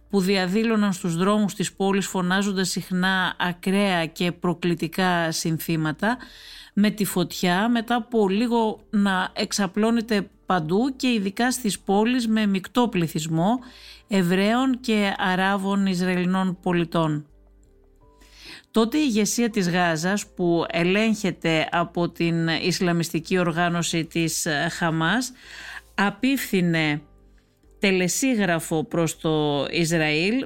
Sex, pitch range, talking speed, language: female, 170-220 Hz, 100 wpm, Greek